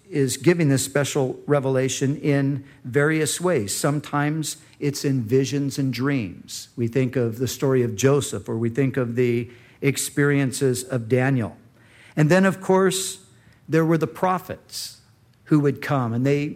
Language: English